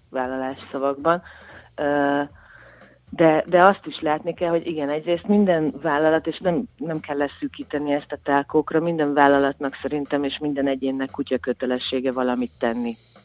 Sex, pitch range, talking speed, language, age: female, 130-155 Hz, 145 wpm, Hungarian, 40-59